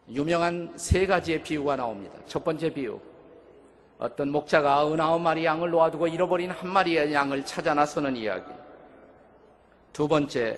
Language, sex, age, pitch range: Korean, male, 50-69, 140-170 Hz